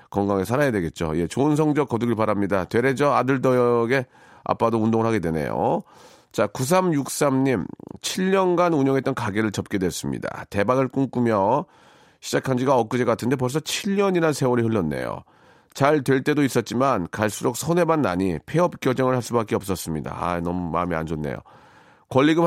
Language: Korean